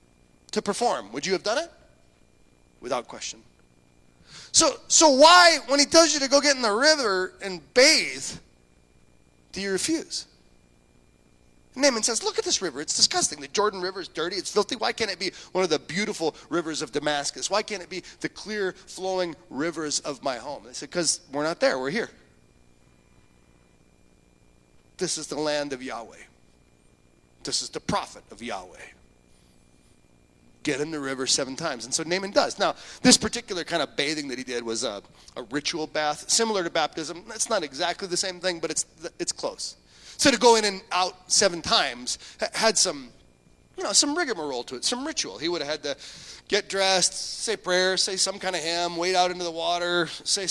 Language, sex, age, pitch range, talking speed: English, male, 30-49, 115-195 Hz, 190 wpm